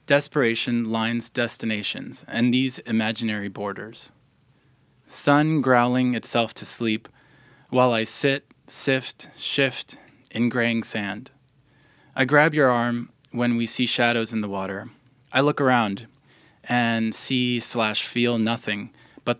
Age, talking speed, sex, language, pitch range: 20-39, 125 wpm, male, English, 115-135 Hz